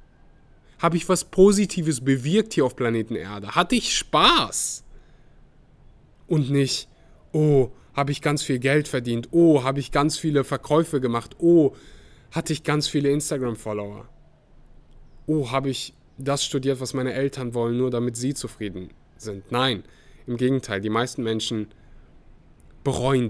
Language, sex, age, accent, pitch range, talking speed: German, male, 20-39, German, 105-135 Hz, 140 wpm